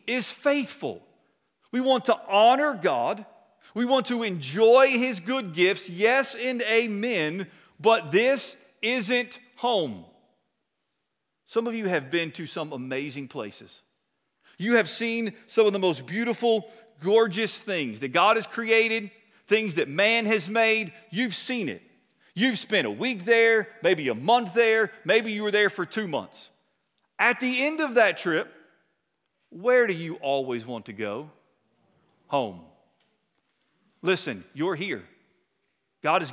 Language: English